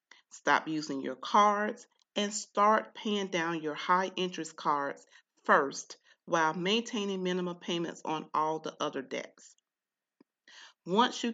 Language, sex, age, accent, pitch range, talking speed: English, female, 40-59, American, 165-215 Hz, 125 wpm